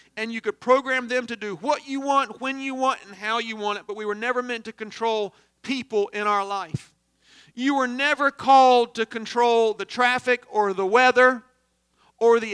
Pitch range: 205-255 Hz